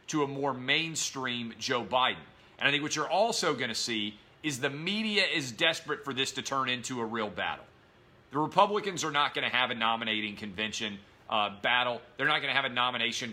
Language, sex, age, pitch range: English, male, 40-59, 120-155 Hz